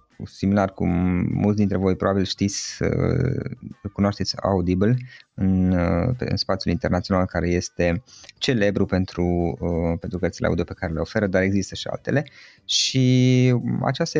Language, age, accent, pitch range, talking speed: Romanian, 20-39, native, 95-110 Hz, 125 wpm